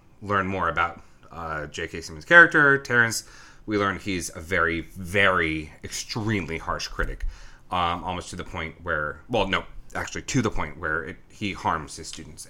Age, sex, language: 30-49, male, English